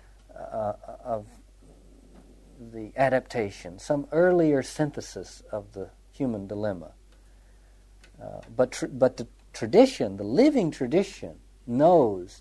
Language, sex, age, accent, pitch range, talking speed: English, male, 60-79, American, 100-160 Hz, 100 wpm